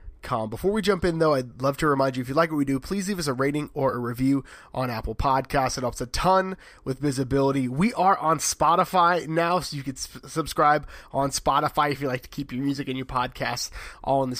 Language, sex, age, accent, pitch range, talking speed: English, male, 20-39, American, 130-160 Hz, 240 wpm